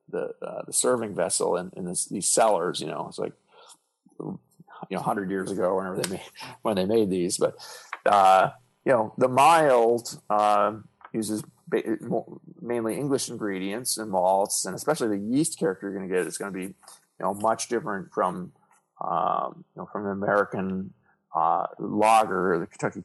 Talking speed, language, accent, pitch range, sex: 170 wpm, English, American, 95-115 Hz, male